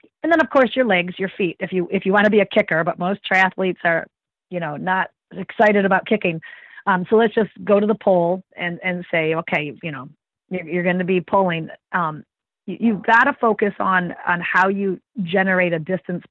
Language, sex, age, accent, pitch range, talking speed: English, female, 40-59, American, 180-225 Hz, 225 wpm